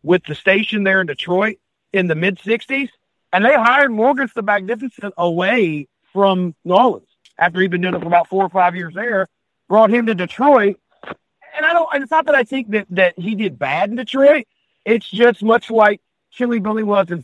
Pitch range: 155-210 Hz